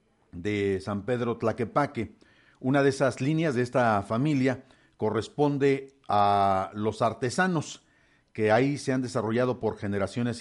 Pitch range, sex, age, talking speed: 105-135 Hz, male, 50-69, 125 wpm